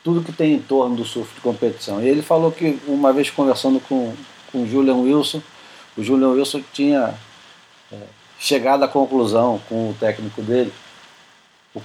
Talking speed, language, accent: 165 wpm, Portuguese, Brazilian